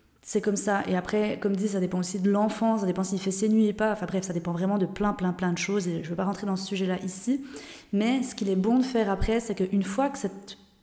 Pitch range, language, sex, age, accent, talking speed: 190-220 Hz, French, female, 20-39, French, 305 wpm